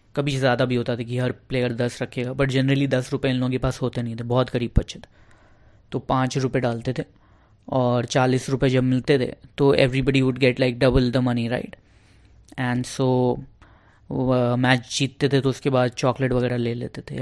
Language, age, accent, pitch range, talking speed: Hindi, 20-39, native, 120-140 Hz, 210 wpm